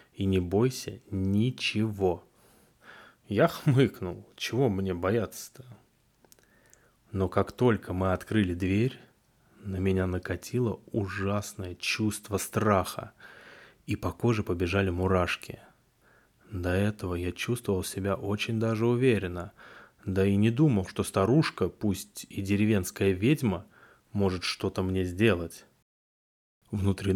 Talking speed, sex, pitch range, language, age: 110 wpm, male, 95-115 Hz, Russian, 20-39